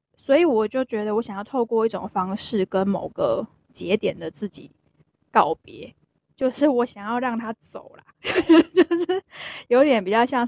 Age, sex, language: 10-29, female, Chinese